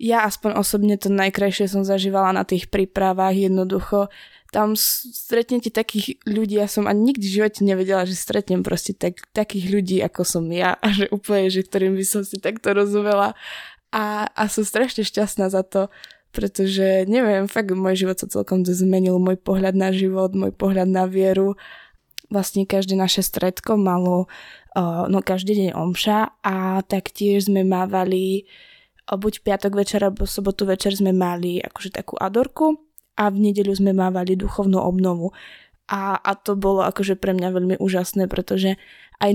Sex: female